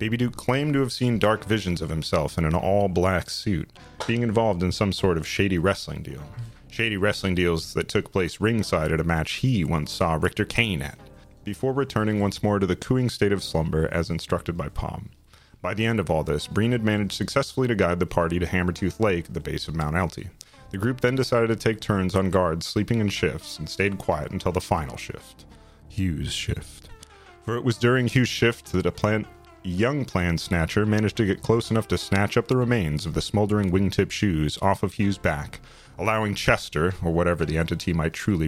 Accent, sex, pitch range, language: American, male, 85-110 Hz, English